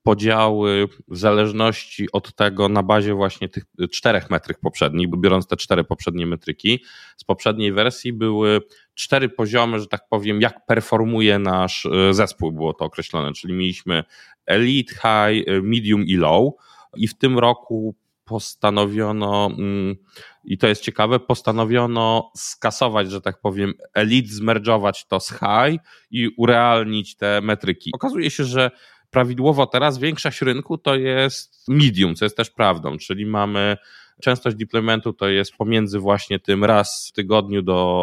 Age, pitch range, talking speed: 20-39, 100-120 Hz, 145 wpm